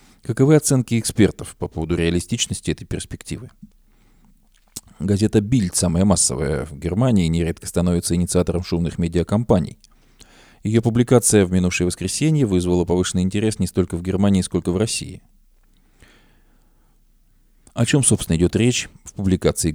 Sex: male